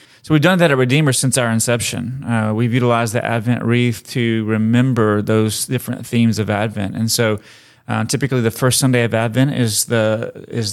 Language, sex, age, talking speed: English, male, 30-49, 190 wpm